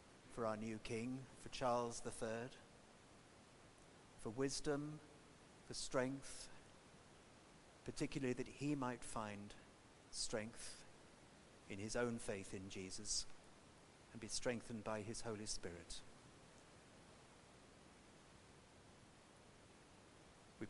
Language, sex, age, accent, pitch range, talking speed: English, male, 50-69, British, 110-130 Hz, 90 wpm